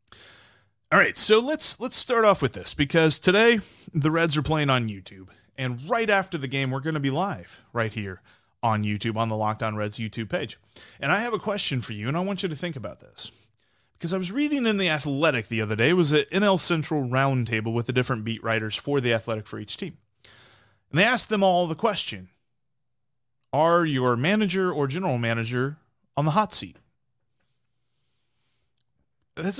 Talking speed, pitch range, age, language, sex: 200 wpm, 115-190 Hz, 30-49, English, male